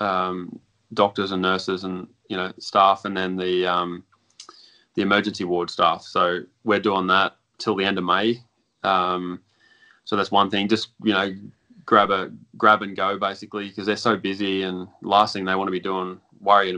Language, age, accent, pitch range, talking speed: English, 20-39, Australian, 95-110 Hz, 190 wpm